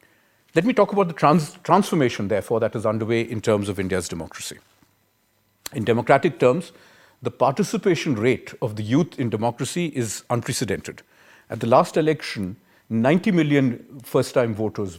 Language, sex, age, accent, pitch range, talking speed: English, male, 50-69, Indian, 115-150 Hz, 145 wpm